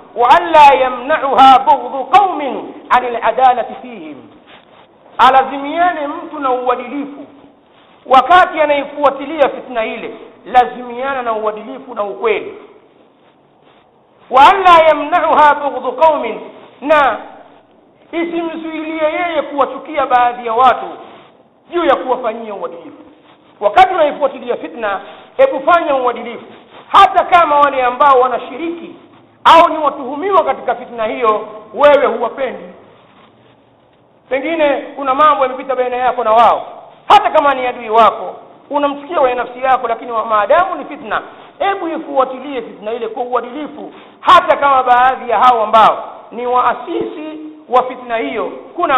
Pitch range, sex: 245-310 Hz, male